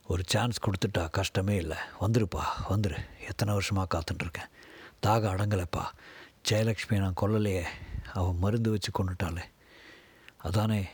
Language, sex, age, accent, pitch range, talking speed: Tamil, male, 50-69, native, 95-115 Hz, 110 wpm